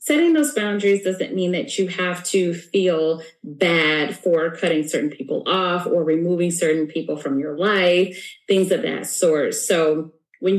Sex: female